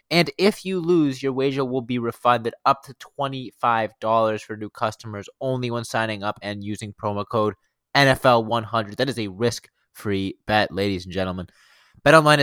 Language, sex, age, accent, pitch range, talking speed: English, male, 20-39, American, 100-125 Hz, 160 wpm